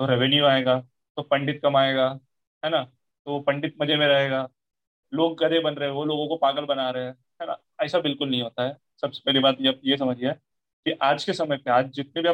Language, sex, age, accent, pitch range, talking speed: Hindi, male, 30-49, native, 130-165 Hz, 230 wpm